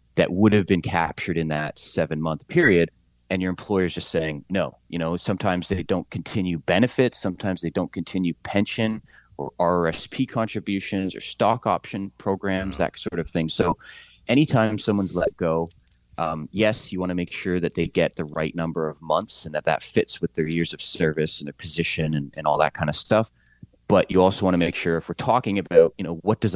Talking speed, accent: 210 wpm, American